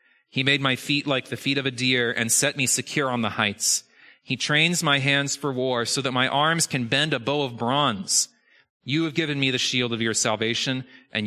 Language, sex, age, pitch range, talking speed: English, male, 30-49, 110-135 Hz, 230 wpm